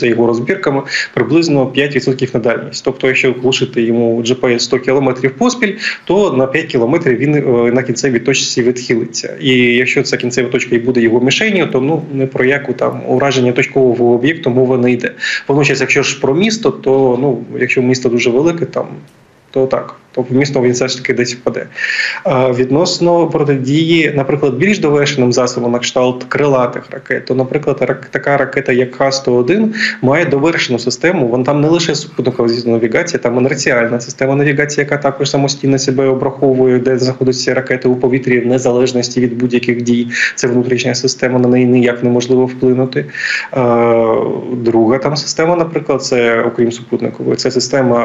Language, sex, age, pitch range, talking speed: Ukrainian, male, 20-39, 125-140 Hz, 160 wpm